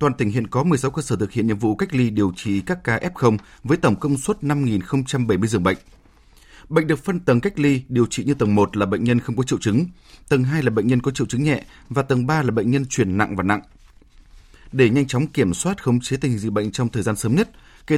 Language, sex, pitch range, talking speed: Vietnamese, male, 105-140 Hz, 260 wpm